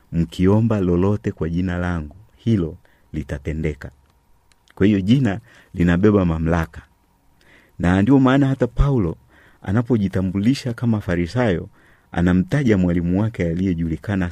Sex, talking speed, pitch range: male, 100 wpm, 80-105 Hz